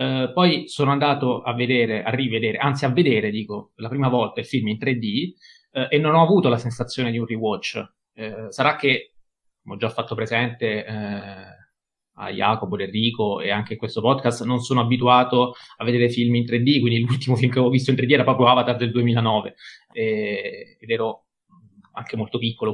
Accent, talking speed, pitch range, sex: native, 195 wpm, 120-150 Hz, male